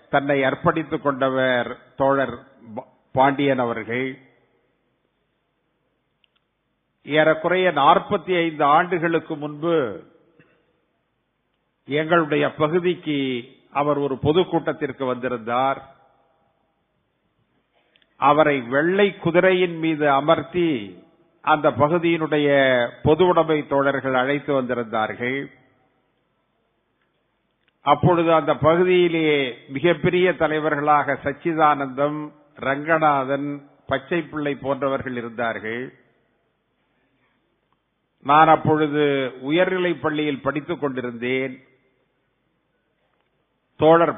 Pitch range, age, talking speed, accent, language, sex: 135-165 Hz, 50-69, 60 wpm, native, Tamil, male